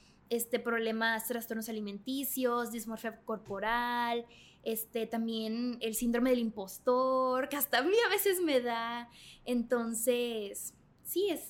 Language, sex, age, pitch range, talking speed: Spanish, female, 20-39, 235-295 Hz, 120 wpm